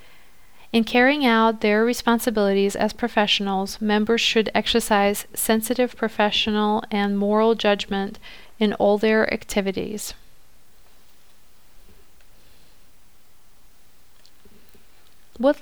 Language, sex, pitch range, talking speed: English, female, 205-230 Hz, 75 wpm